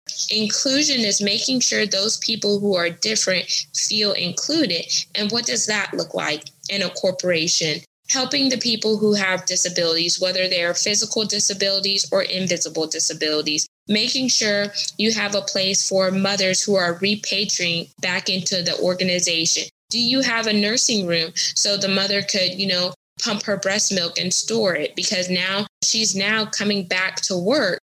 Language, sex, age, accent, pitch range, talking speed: English, female, 20-39, American, 185-210 Hz, 165 wpm